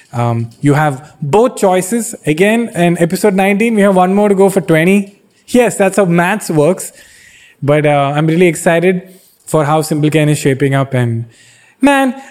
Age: 20-39